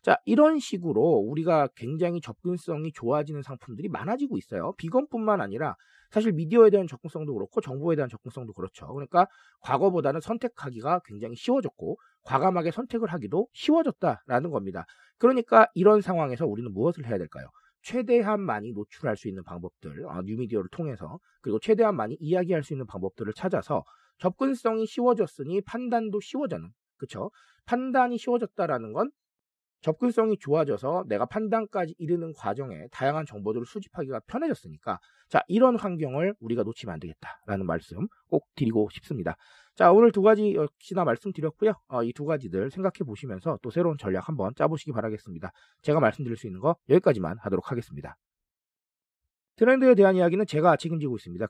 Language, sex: Korean, male